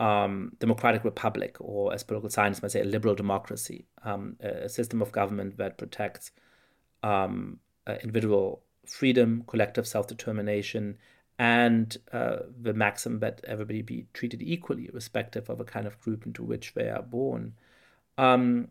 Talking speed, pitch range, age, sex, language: 150 wpm, 110-135 Hz, 30-49, male, English